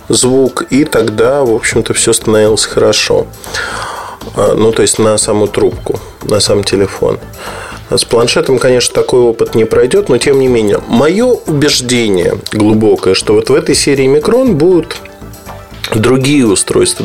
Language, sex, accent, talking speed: Russian, male, native, 140 wpm